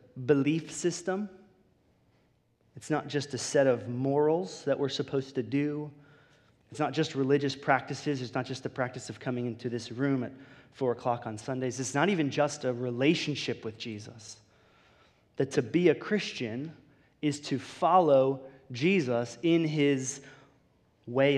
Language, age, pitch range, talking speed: English, 30-49, 120-140 Hz, 150 wpm